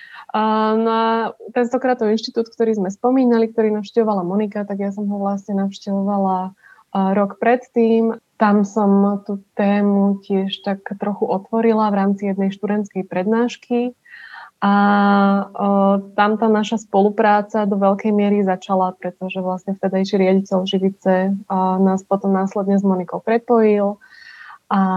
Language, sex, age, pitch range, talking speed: Slovak, female, 20-39, 195-220 Hz, 125 wpm